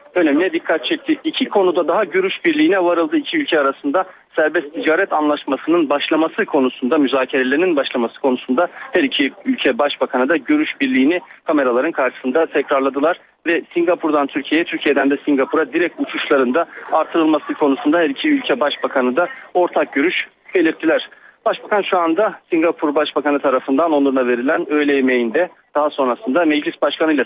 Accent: native